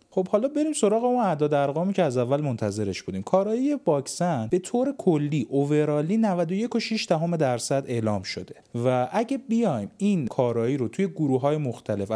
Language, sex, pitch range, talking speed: Persian, male, 125-185 Hz, 160 wpm